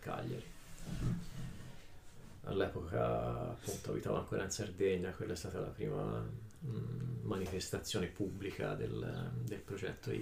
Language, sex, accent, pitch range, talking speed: Italian, male, native, 90-110 Hz, 105 wpm